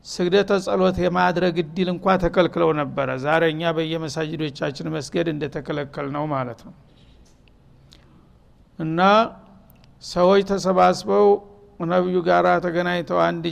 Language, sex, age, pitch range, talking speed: Amharic, male, 60-79, 170-185 Hz, 95 wpm